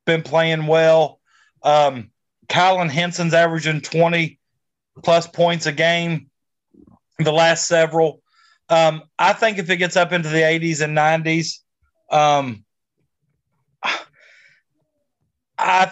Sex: male